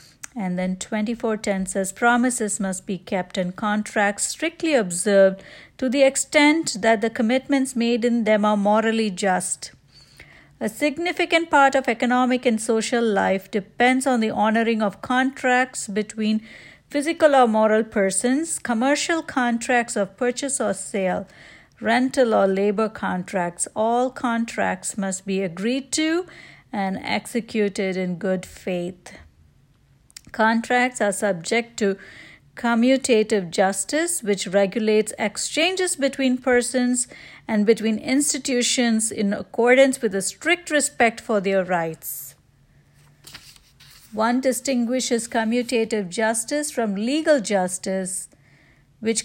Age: 60-79